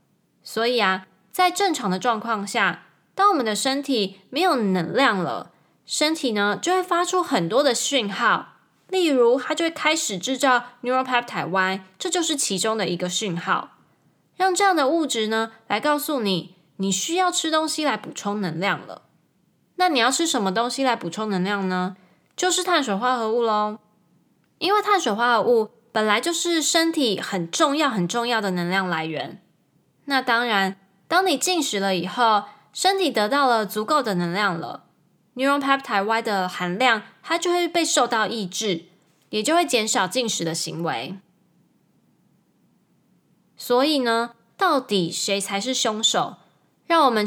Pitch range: 195-295 Hz